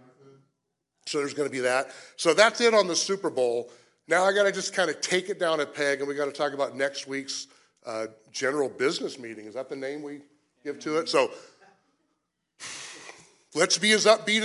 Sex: male